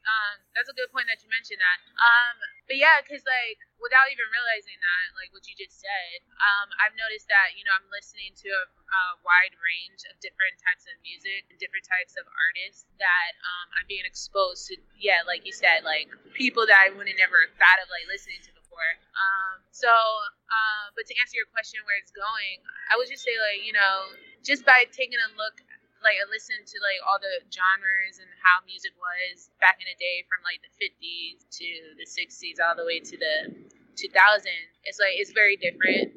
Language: English